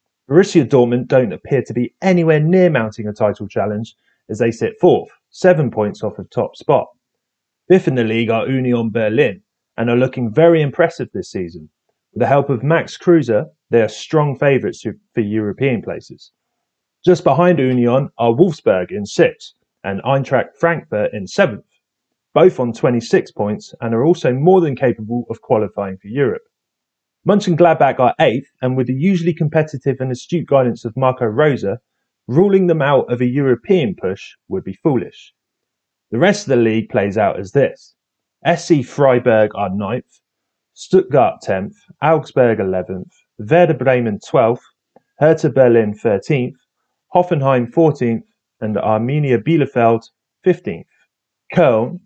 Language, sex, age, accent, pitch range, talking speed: English, male, 30-49, British, 115-170 Hz, 150 wpm